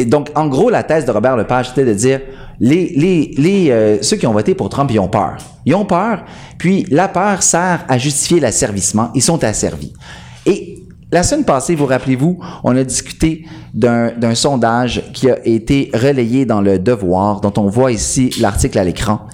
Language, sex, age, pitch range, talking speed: French, male, 40-59, 110-145 Hz, 195 wpm